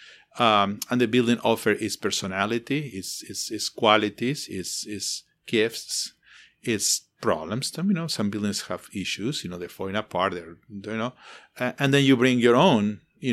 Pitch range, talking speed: 100-120 Hz, 175 wpm